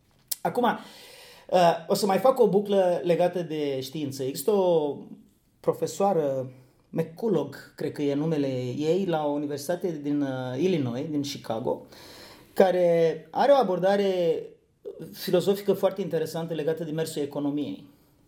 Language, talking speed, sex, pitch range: Romanian, 120 wpm, male, 145-195 Hz